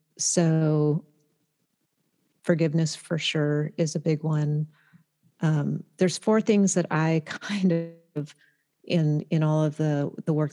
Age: 40-59